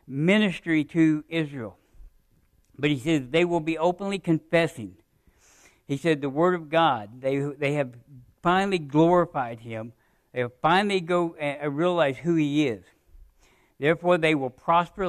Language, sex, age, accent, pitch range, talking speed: English, male, 60-79, American, 120-155 Hz, 145 wpm